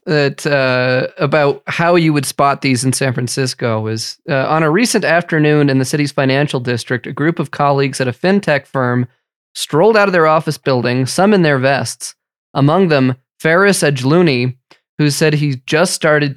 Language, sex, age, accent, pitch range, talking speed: English, male, 20-39, American, 130-170 Hz, 180 wpm